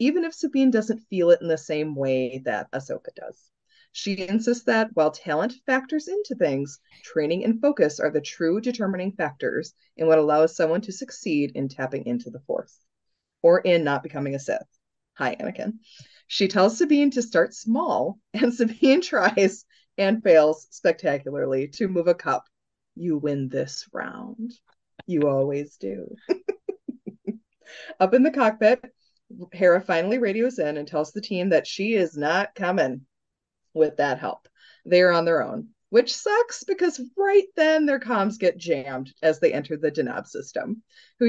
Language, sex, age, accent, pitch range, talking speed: English, female, 30-49, American, 155-250 Hz, 165 wpm